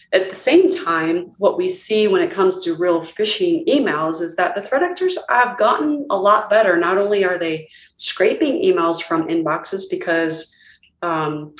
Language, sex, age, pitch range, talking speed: English, female, 30-49, 160-200 Hz, 175 wpm